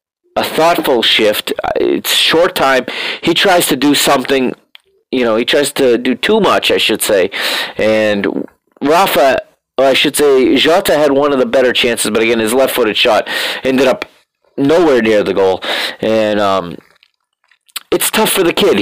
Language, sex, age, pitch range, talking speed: English, male, 40-59, 130-185 Hz, 165 wpm